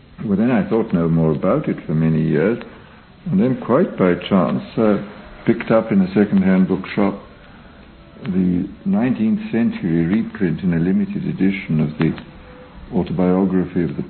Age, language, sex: 60-79, English, male